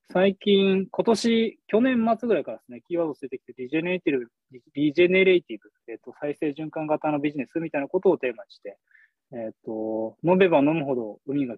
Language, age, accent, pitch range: Japanese, 20-39, native, 120-180 Hz